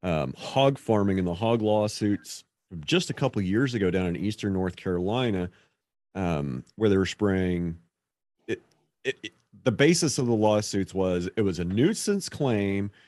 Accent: American